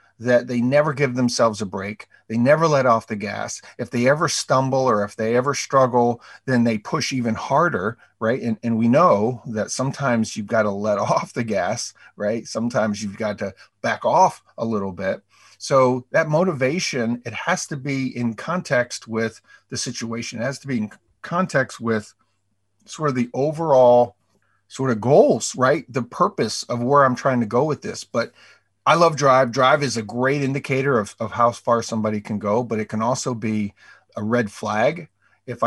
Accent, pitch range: American, 110-130 Hz